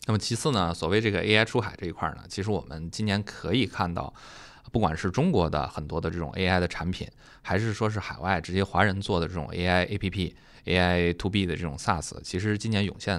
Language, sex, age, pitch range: Chinese, male, 20-39, 80-100 Hz